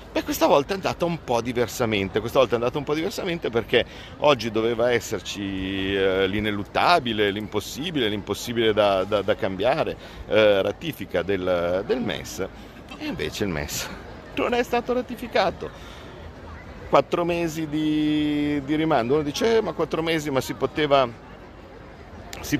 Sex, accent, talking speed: male, native, 145 wpm